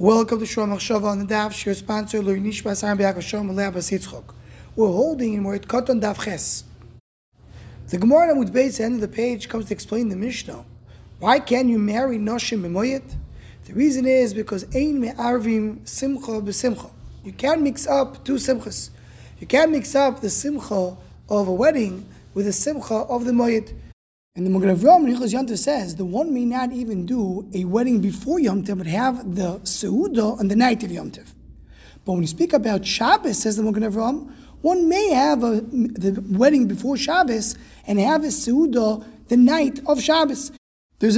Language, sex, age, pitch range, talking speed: English, male, 20-39, 205-265 Hz, 175 wpm